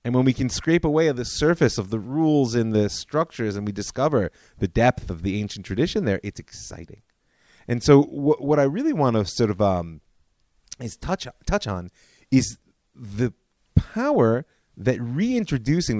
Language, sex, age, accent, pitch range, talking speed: English, male, 30-49, American, 95-125 Hz, 175 wpm